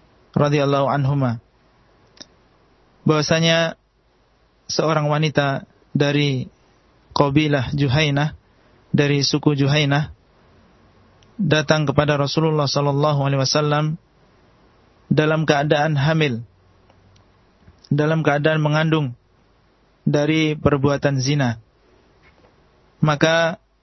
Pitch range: 135-155 Hz